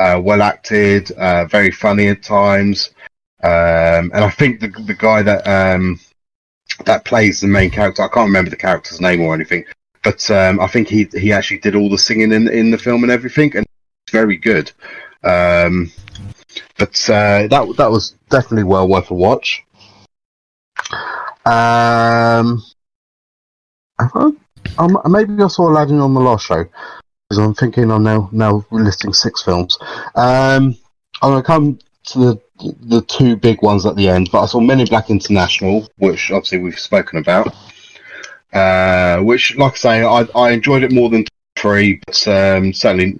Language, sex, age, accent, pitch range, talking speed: English, male, 30-49, British, 95-120 Hz, 165 wpm